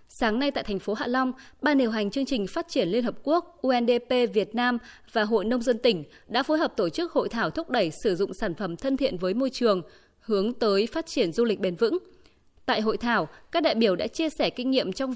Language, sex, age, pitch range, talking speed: Vietnamese, female, 20-39, 210-275 Hz, 250 wpm